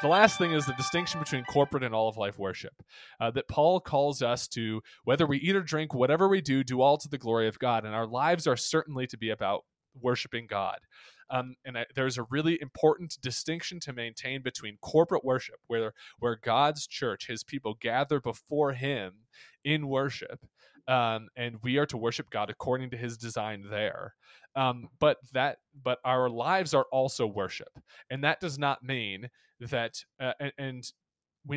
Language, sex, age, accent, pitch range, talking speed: English, male, 20-39, American, 120-150 Hz, 185 wpm